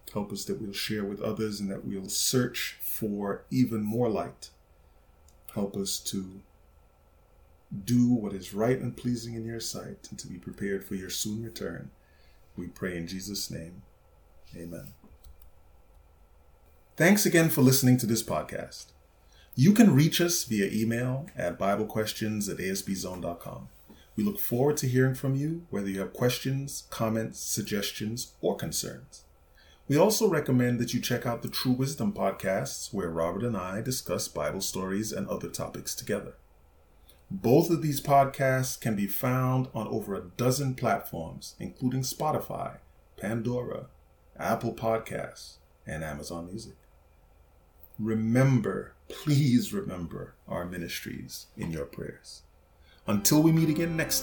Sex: male